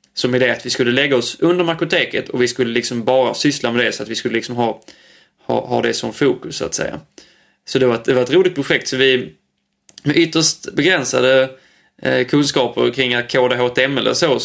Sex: male